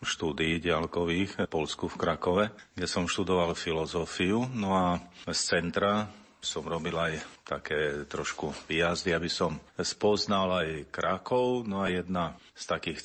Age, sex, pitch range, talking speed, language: 40-59, male, 85-100 Hz, 140 wpm, Slovak